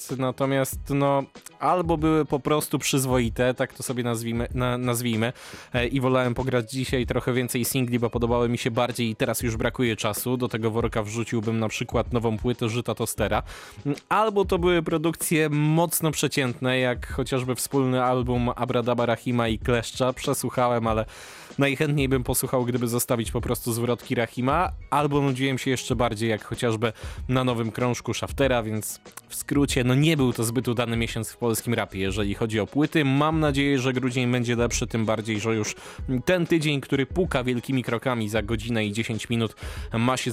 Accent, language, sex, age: native, Polish, male, 20-39